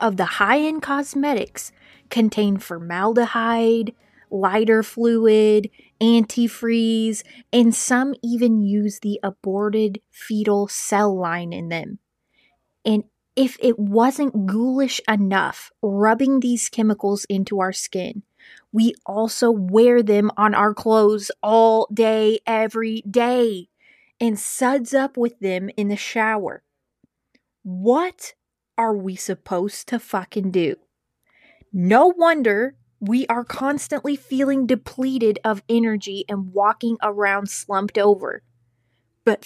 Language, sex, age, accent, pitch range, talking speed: English, female, 20-39, American, 200-240 Hz, 110 wpm